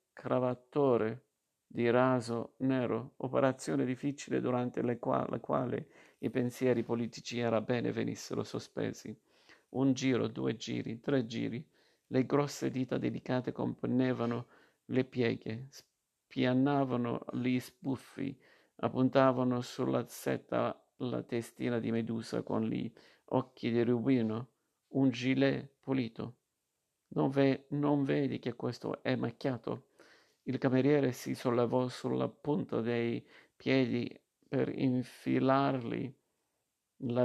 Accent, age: native, 50-69